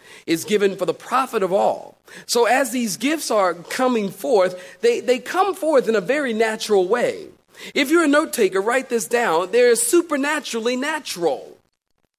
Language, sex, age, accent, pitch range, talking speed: English, male, 40-59, American, 230-340 Hz, 165 wpm